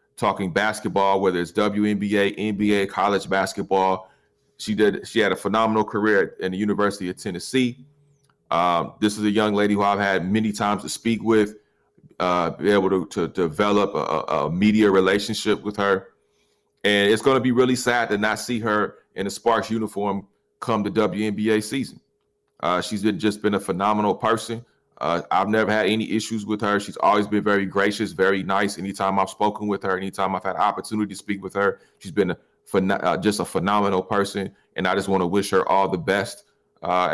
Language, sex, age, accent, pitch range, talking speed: English, male, 30-49, American, 100-110 Hz, 190 wpm